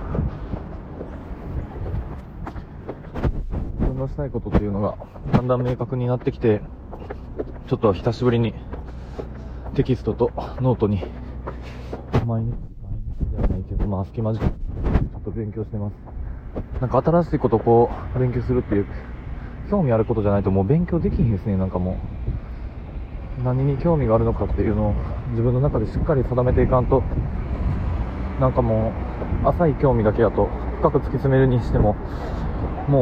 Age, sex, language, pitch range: 20-39, male, Japanese, 100-130 Hz